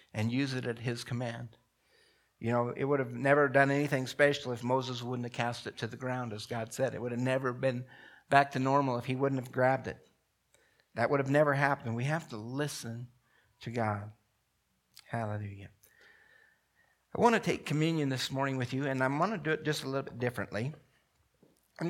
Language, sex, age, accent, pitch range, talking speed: English, male, 60-79, American, 120-150 Hz, 205 wpm